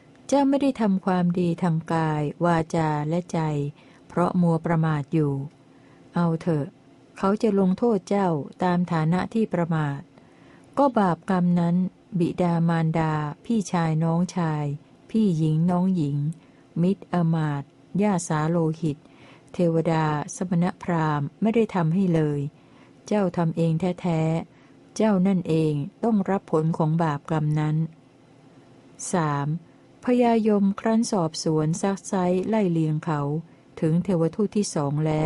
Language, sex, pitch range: Thai, female, 155-195 Hz